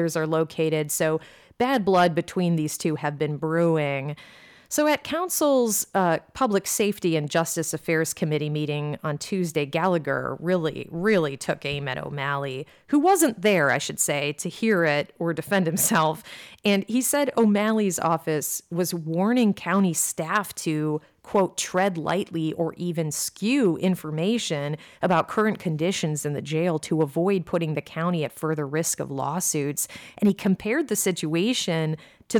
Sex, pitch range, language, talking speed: female, 155-210 Hz, English, 150 wpm